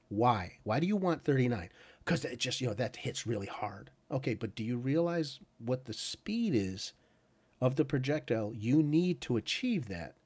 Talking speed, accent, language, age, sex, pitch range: 185 wpm, American, English, 40-59, male, 110-150 Hz